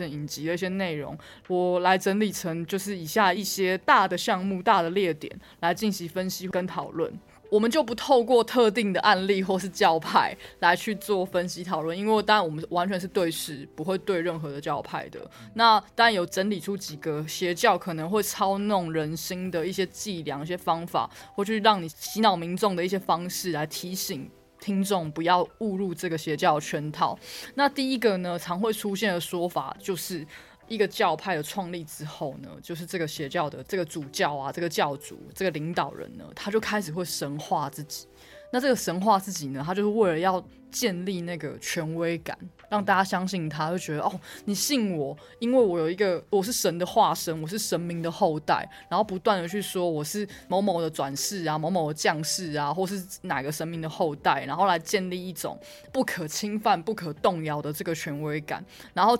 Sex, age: female, 20-39